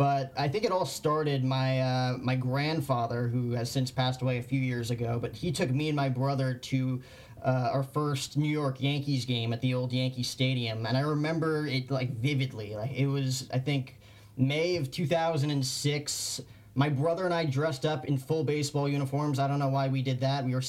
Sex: male